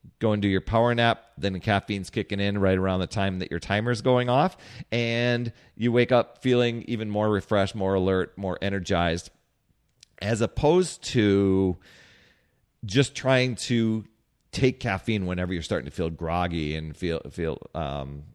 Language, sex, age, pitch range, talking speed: English, male, 40-59, 95-120 Hz, 160 wpm